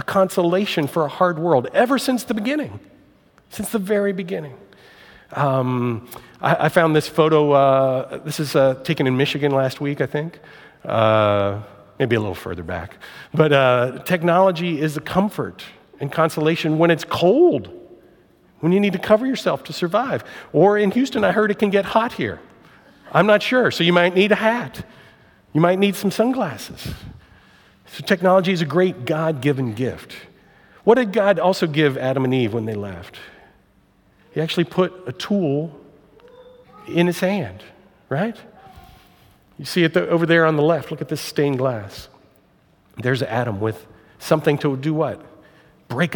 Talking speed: 165 wpm